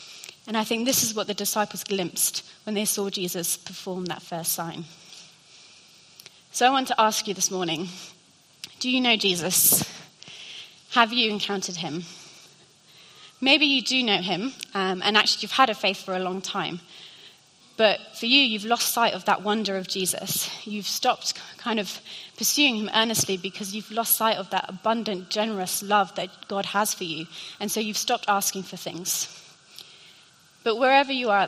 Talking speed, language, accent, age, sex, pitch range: 175 wpm, English, British, 30-49, female, 185-215 Hz